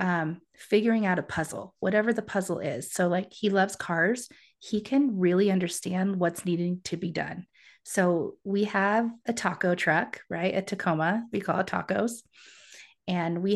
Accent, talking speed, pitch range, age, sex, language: American, 170 wpm, 170-210 Hz, 30-49, female, English